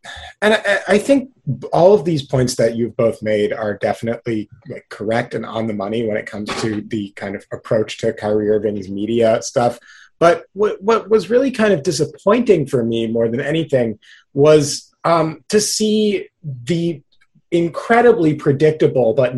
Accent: American